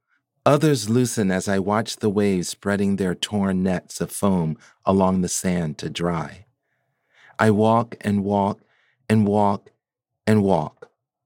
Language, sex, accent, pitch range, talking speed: English, male, American, 95-120 Hz, 140 wpm